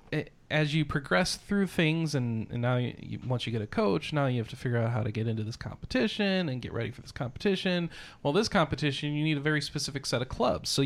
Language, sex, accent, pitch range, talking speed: English, male, American, 125-155 Hz, 250 wpm